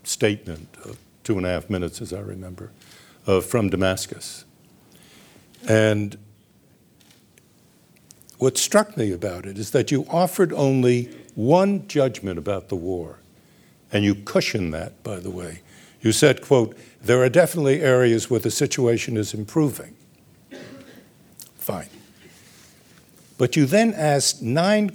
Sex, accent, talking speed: male, American, 125 wpm